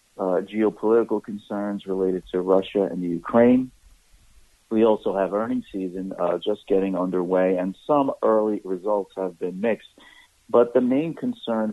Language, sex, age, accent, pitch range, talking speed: English, male, 50-69, American, 95-115 Hz, 150 wpm